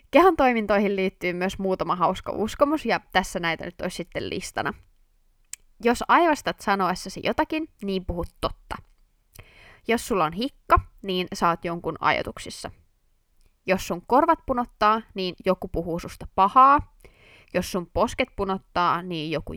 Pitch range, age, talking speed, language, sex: 175-235 Hz, 20-39, 135 wpm, Finnish, female